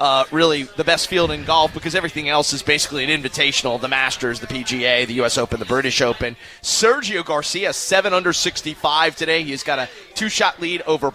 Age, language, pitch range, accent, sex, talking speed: 30-49, English, 150-185 Hz, American, male, 195 wpm